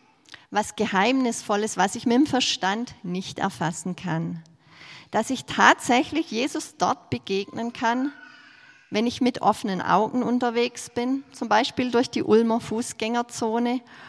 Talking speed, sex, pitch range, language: 130 wpm, female, 190-245 Hz, German